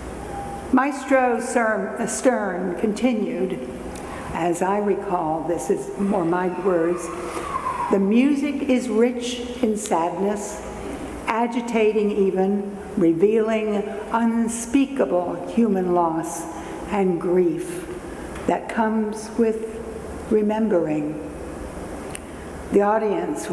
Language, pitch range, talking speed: English, 180-220 Hz, 80 wpm